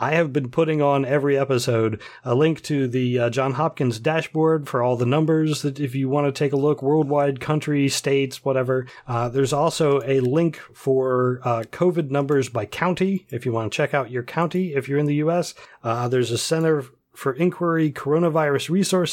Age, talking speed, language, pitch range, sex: 40-59, 200 wpm, English, 135-170 Hz, male